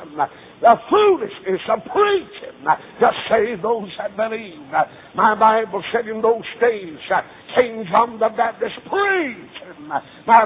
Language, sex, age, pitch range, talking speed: English, male, 60-79, 220-245 Hz, 120 wpm